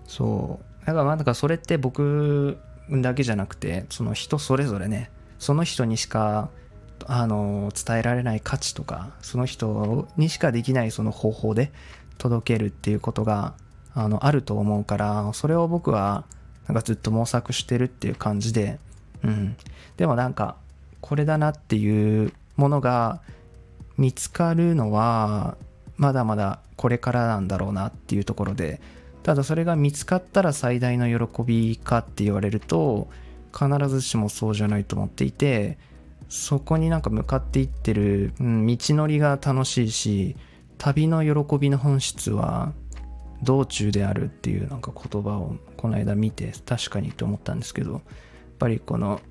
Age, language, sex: 20-39, Japanese, male